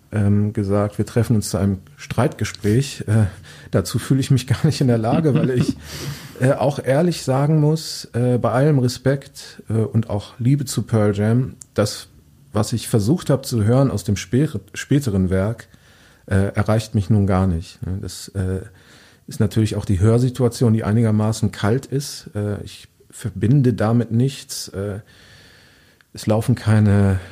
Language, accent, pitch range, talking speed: German, German, 100-120 Hz, 160 wpm